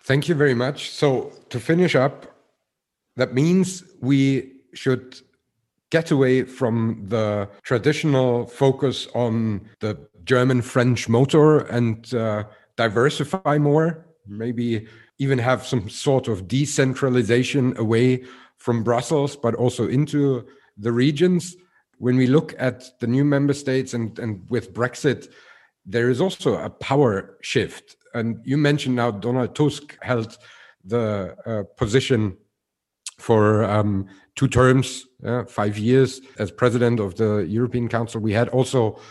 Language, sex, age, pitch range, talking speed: English, male, 50-69, 110-135 Hz, 130 wpm